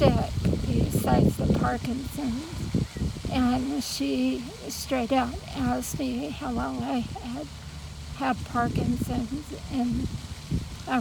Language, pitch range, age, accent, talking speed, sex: English, 240-265 Hz, 50-69, American, 105 wpm, female